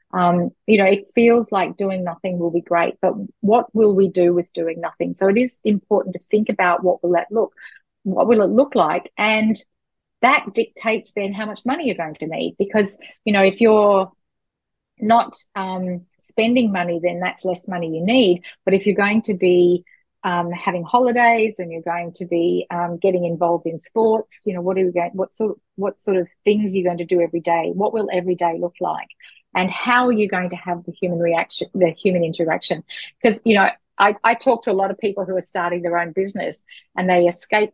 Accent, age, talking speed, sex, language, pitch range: Australian, 40-59, 220 wpm, female, English, 175-215 Hz